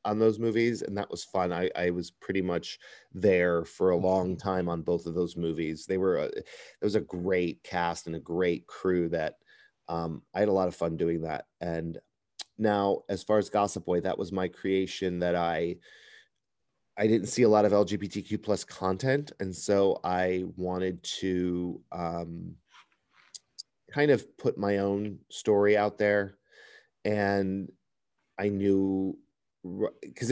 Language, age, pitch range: English, 30-49, 90-105 Hz